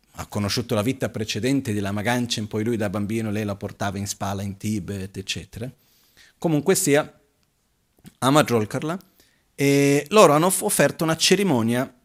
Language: Italian